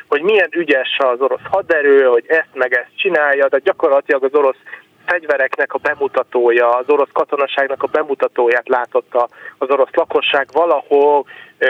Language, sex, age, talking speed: Hungarian, male, 30-49, 145 wpm